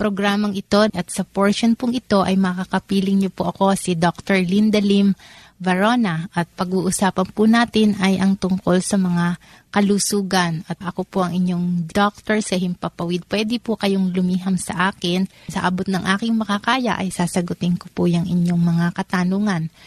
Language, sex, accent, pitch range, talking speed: Filipino, female, native, 180-205 Hz, 165 wpm